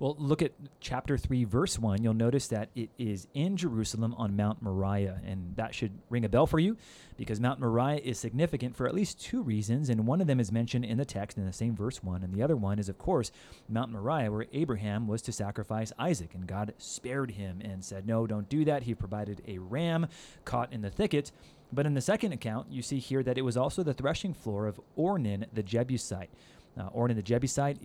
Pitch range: 105-135 Hz